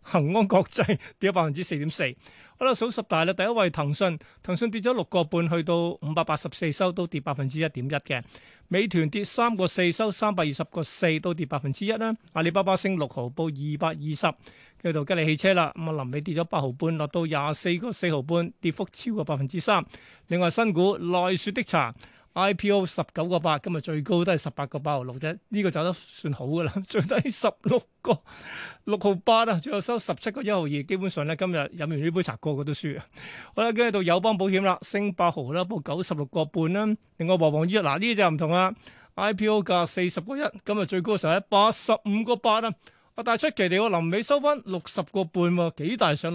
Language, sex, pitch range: Chinese, male, 155-200 Hz